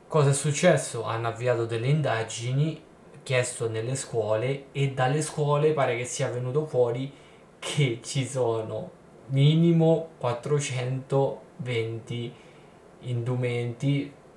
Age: 10-29